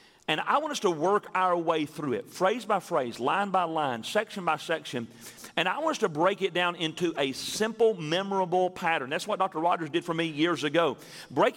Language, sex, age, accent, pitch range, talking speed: English, male, 40-59, American, 165-220 Hz, 220 wpm